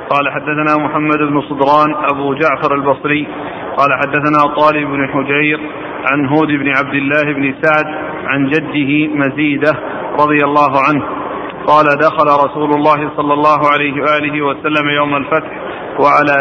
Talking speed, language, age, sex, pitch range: 140 wpm, Arabic, 40-59, male, 145-155 Hz